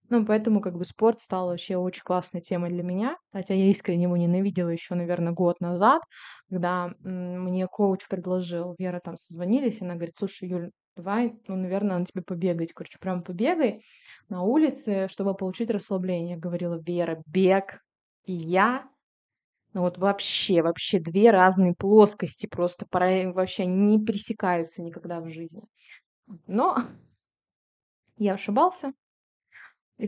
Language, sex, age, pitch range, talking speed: Russian, female, 20-39, 180-215 Hz, 145 wpm